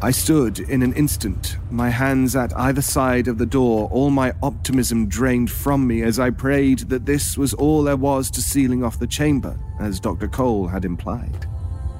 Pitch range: 95-125 Hz